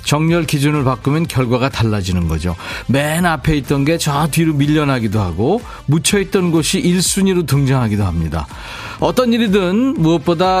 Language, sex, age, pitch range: Korean, male, 40-59, 115-170 Hz